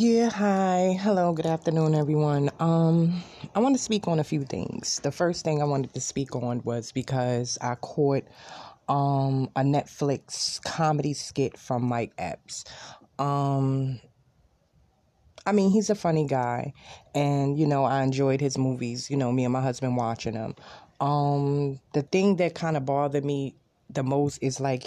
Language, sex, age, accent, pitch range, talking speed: English, female, 20-39, American, 130-150 Hz, 165 wpm